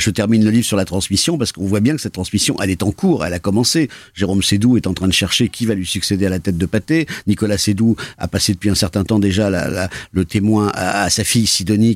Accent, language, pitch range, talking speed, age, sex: French, French, 100-120 Hz, 275 wpm, 50-69, male